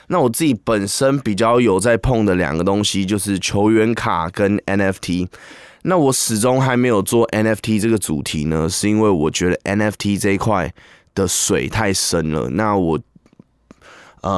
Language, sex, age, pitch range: Chinese, male, 20-39, 95-115 Hz